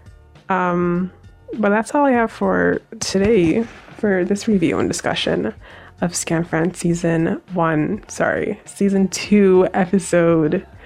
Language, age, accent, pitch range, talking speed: English, 20-39, American, 180-225 Hz, 115 wpm